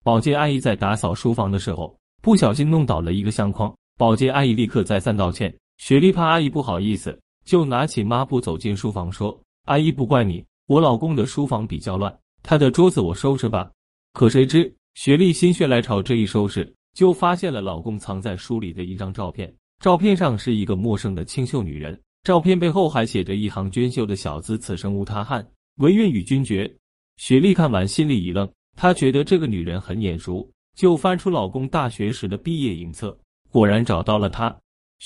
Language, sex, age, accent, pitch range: Chinese, male, 30-49, native, 100-145 Hz